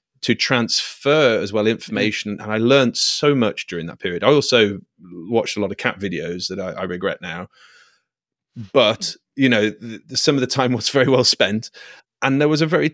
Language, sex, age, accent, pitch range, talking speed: English, male, 30-49, British, 105-135 Hz, 205 wpm